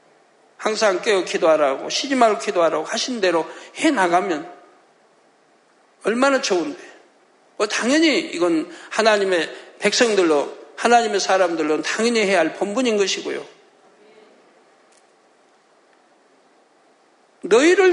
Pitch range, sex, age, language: 200-305 Hz, male, 60-79, Korean